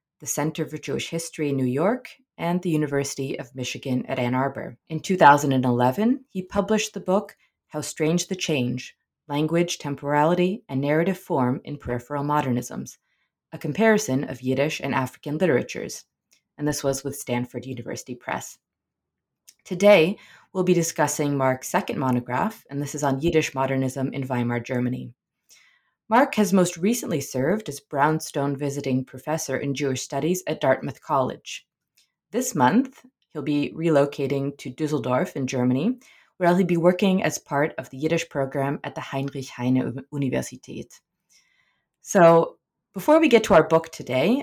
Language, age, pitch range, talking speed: English, 30-49, 135-180 Hz, 150 wpm